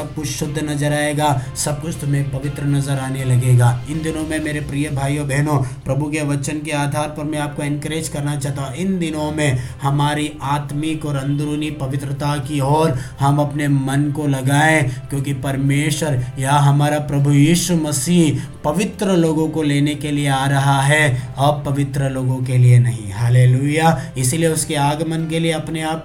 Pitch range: 140-165 Hz